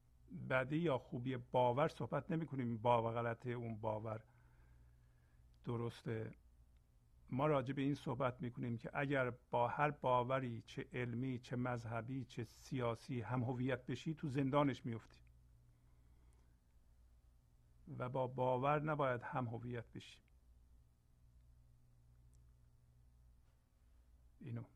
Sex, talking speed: male, 105 wpm